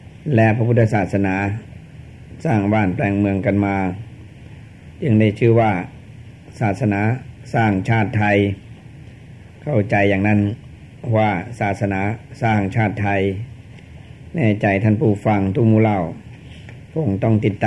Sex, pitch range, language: male, 100-120 Hz, Thai